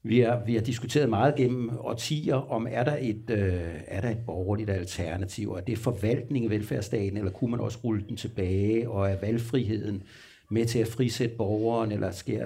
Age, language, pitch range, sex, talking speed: 60-79, Danish, 105-130 Hz, male, 180 wpm